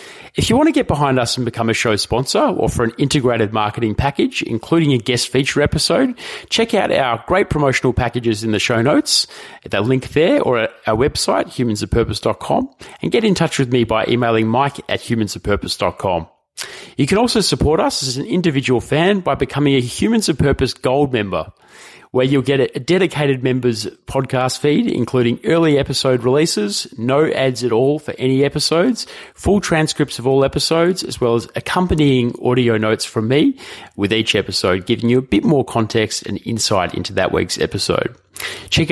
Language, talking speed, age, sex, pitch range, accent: English, 180 wpm, 30-49, male, 115-145 Hz, Australian